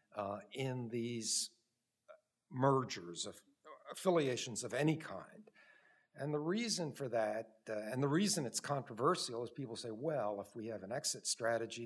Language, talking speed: English, 155 wpm